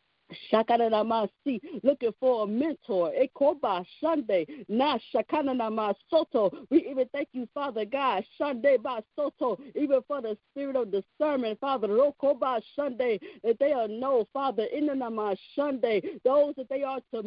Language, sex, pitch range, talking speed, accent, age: English, female, 225-290 Hz, 145 wpm, American, 50-69